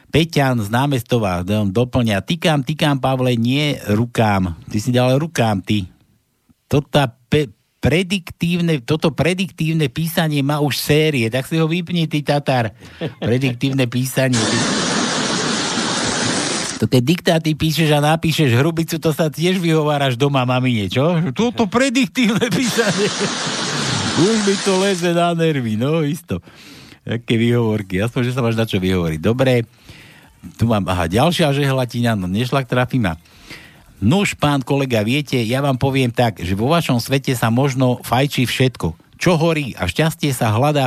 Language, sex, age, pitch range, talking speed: Slovak, male, 60-79, 115-160 Hz, 145 wpm